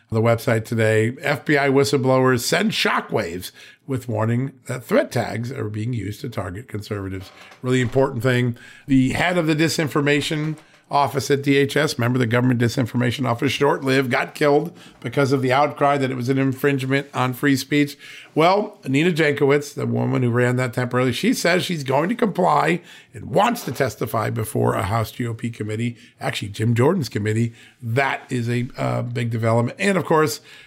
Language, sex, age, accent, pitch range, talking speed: English, male, 50-69, American, 120-145 Hz, 170 wpm